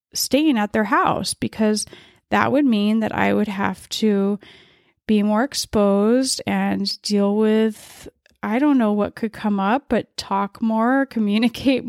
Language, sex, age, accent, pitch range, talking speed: English, female, 20-39, American, 200-245 Hz, 150 wpm